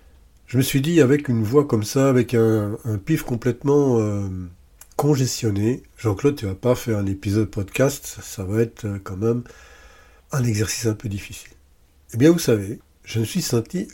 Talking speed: 190 wpm